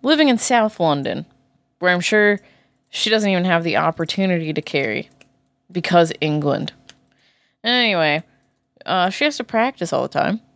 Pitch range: 155-220 Hz